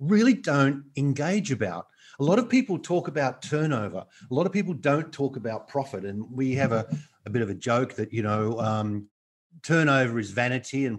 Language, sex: English, male